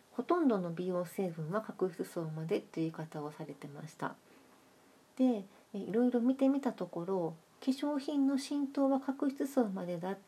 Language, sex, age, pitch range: Japanese, female, 40-59, 165-225 Hz